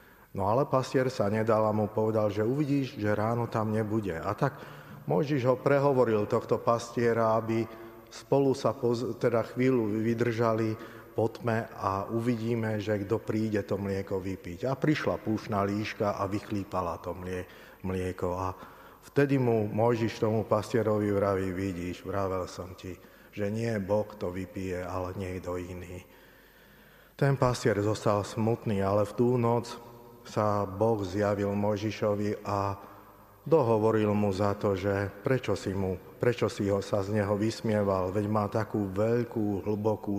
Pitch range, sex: 100-120 Hz, male